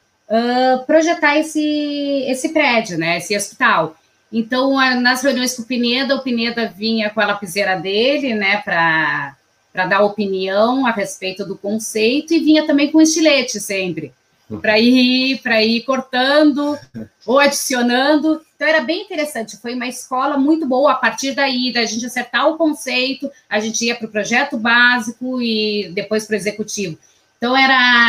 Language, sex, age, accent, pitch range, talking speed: Portuguese, female, 20-39, Brazilian, 205-265 Hz, 150 wpm